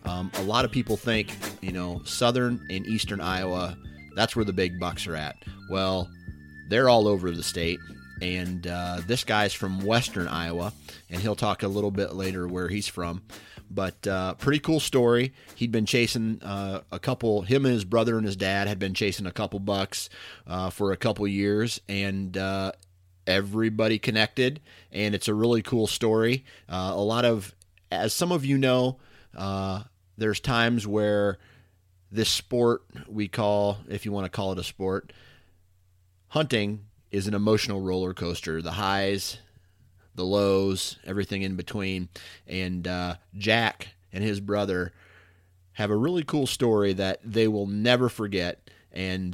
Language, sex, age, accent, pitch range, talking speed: English, male, 30-49, American, 90-110 Hz, 165 wpm